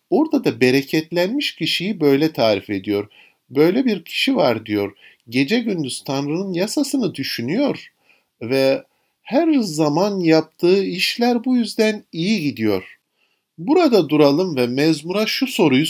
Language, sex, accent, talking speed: Turkish, male, native, 120 wpm